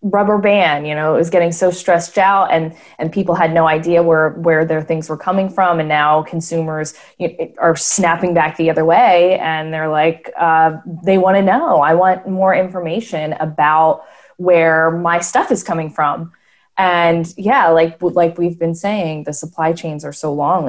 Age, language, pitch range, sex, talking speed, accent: 20-39, English, 165-205 Hz, female, 190 wpm, American